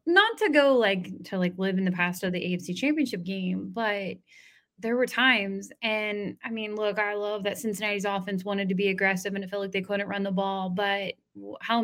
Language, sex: English, female